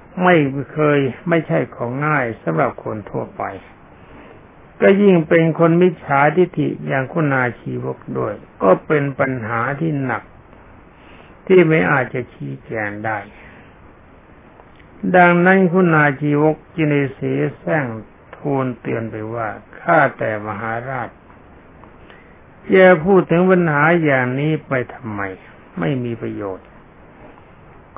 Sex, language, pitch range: male, Thai, 120-160 Hz